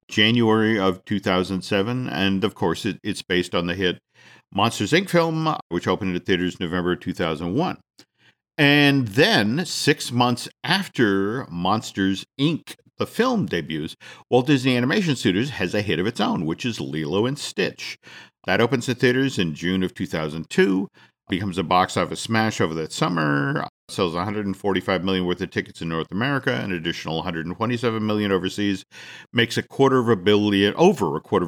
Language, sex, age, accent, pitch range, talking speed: English, male, 50-69, American, 90-115 Hz, 160 wpm